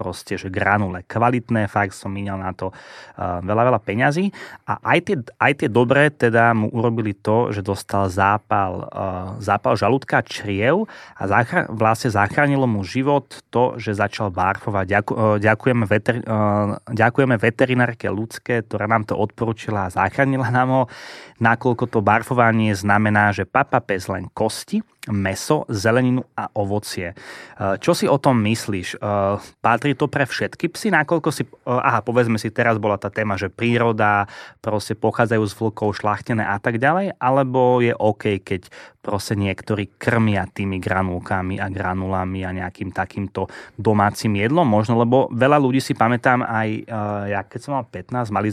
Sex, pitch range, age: male, 100-125 Hz, 20-39